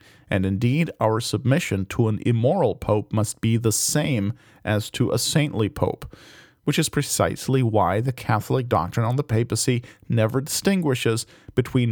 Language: English